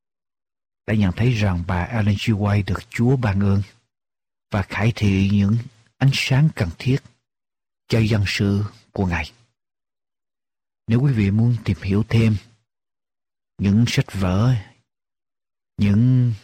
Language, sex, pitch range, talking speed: Vietnamese, male, 95-120 Hz, 130 wpm